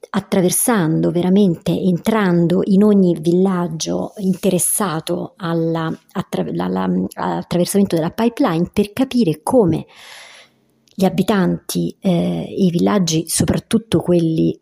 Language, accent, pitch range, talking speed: Italian, native, 165-190 Hz, 95 wpm